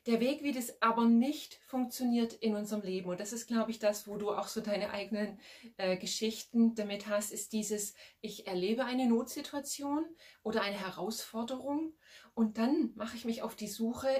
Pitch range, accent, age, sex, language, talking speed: 210-245 Hz, German, 30-49, female, German, 180 wpm